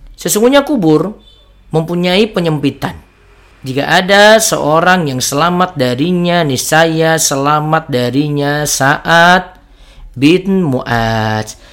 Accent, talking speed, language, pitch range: native, 80 wpm, Indonesian, 130-185 Hz